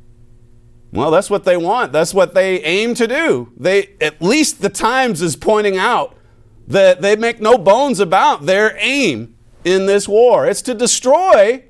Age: 50-69